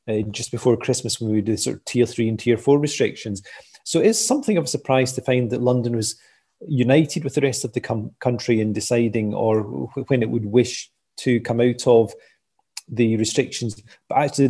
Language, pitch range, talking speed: English, 110-125 Hz, 210 wpm